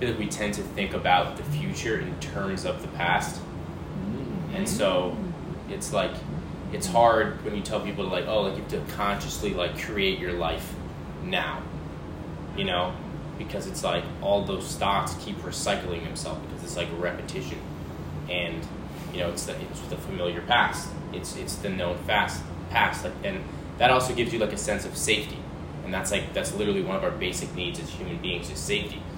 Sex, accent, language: male, American, English